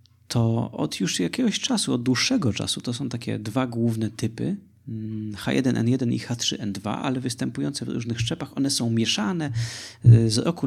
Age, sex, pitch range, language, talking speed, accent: 30-49, male, 110-130 Hz, Polish, 150 wpm, native